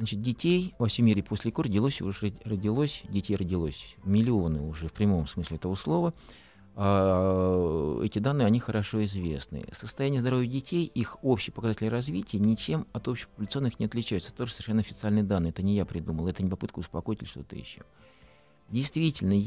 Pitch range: 95-115 Hz